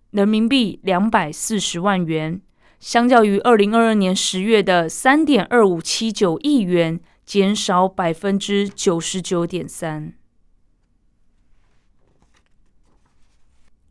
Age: 20-39